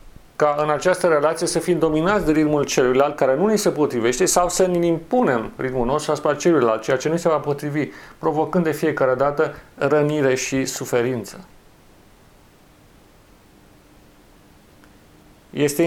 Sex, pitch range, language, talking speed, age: male, 135-170 Hz, Romanian, 140 wpm, 40-59